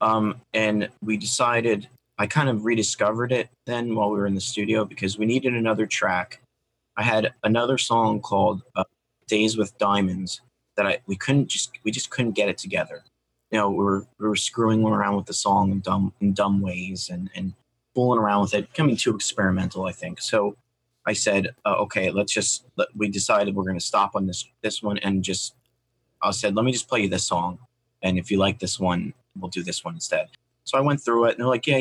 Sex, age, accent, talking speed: male, 30-49, American, 220 wpm